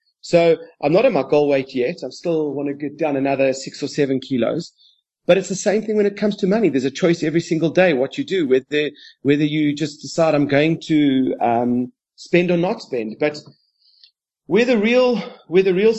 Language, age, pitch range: English, 30-49, 135-175 Hz